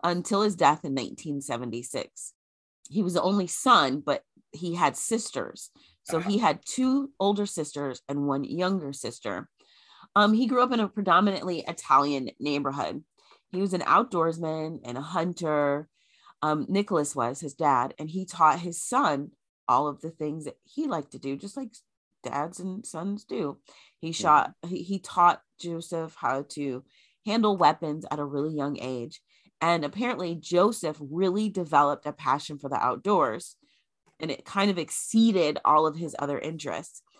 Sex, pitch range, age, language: female, 145-195 Hz, 30-49, English